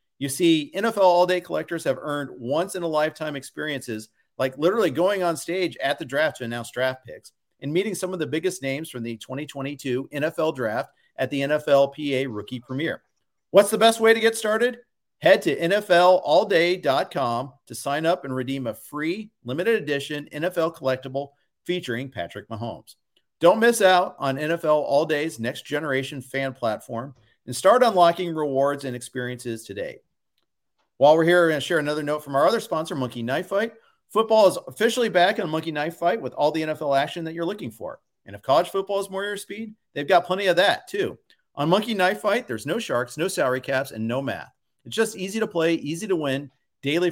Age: 50-69